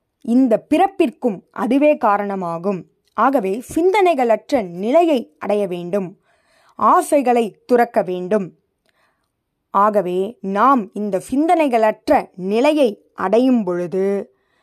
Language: Tamil